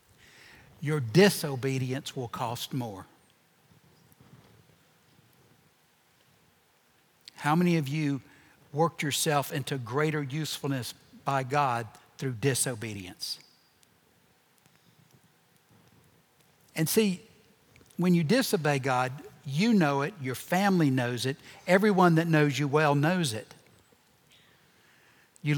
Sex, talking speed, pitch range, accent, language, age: male, 90 wpm, 130-170 Hz, American, English, 60-79